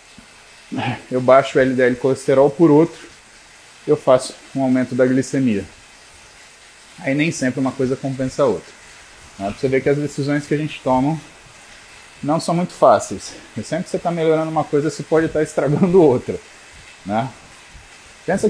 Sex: male